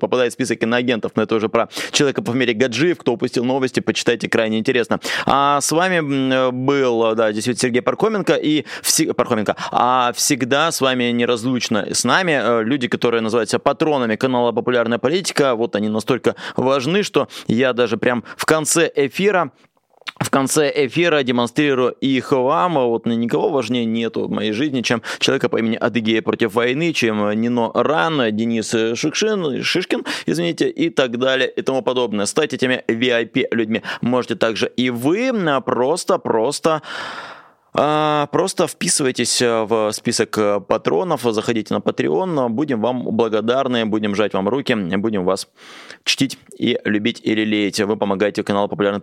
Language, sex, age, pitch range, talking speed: Russian, male, 20-39, 115-135 Hz, 145 wpm